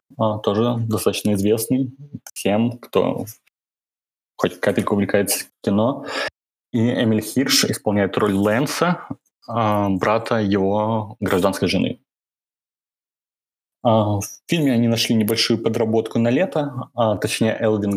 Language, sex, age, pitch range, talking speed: Russian, male, 20-39, 100-115 Hz, 100 wpm